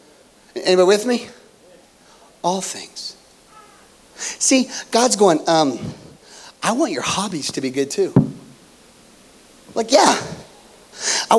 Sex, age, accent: male, 40-59, American